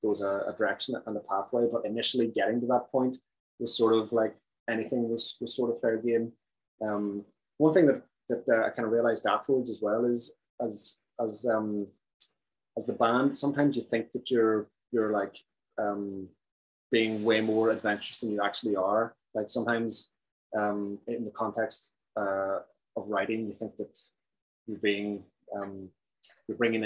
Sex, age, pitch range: male, 20-39, 105-120 Hz